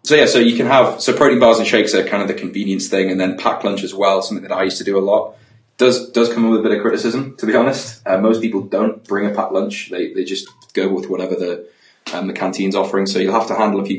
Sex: male